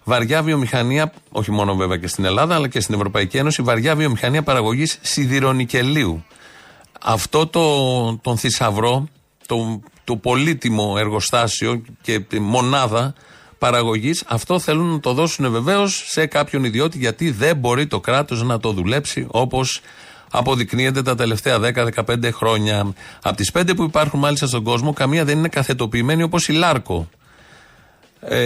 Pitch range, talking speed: 115-150 Hz, 140 wpm